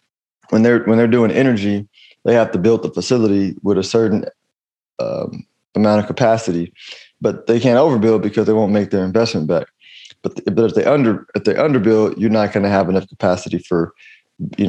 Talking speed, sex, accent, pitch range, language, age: 195 wpm, male, American, 95-110 Hz, English, 20-39